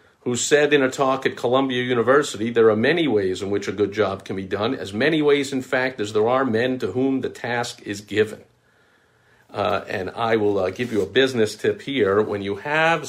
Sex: male